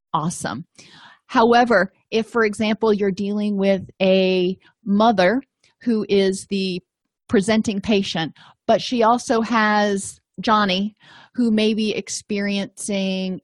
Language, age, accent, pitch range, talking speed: English, 40-59, American, 185-220 Hz, 105 wpm